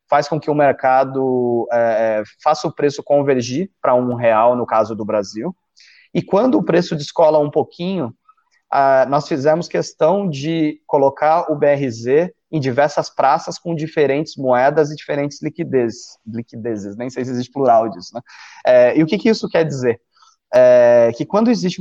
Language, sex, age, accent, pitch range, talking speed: Portuguese, male, 30-49, Brazilian, 125-160 Hz, 170 wpm